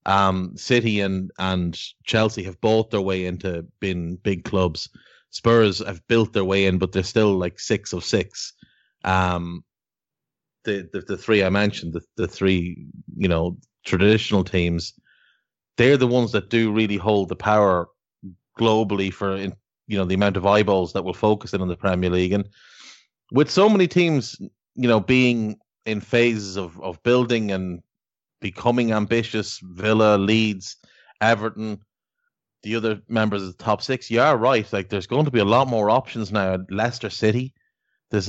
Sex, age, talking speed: male, 30-49, 170 wpm